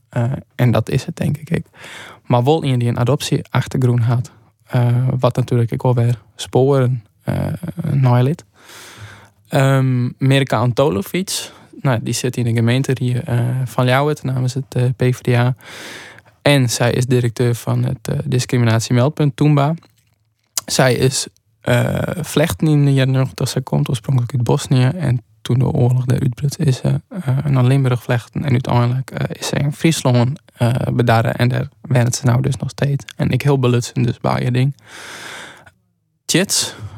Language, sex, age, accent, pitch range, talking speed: Dutch, male, 20-39, Dutch, 120-140 Hz, 165 wpm